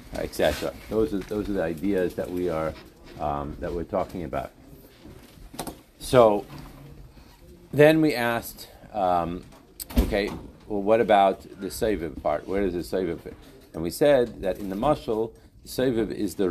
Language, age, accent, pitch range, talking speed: English, 40-59, American, 95-120 Hz, 155 wpm